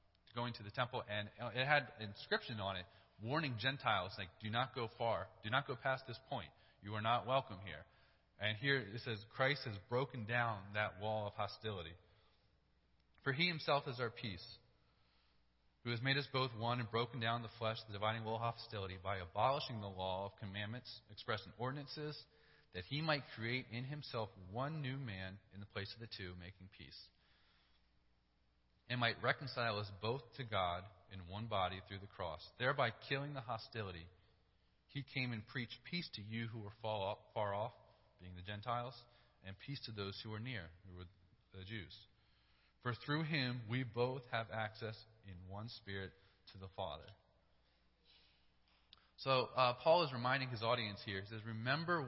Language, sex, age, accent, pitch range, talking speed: English, male, 30-49, American, 95-125 Hz, 175 wpm